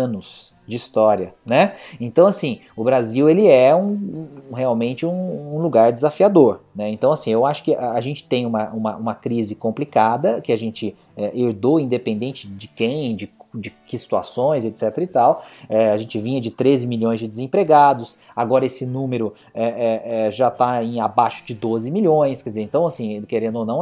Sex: male